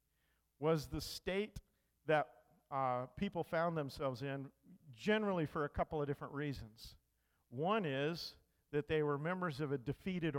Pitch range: 115-160 Hz